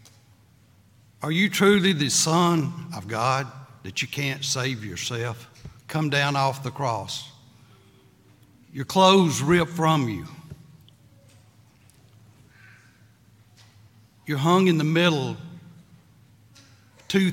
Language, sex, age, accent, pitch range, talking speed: English, male, 60-79, American, 115-155 Hz, 95 wpm